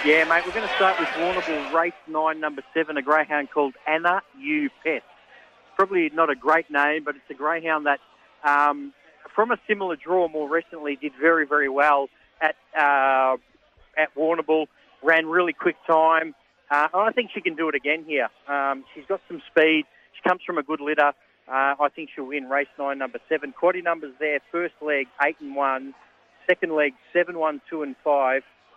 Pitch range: 140-165 Hz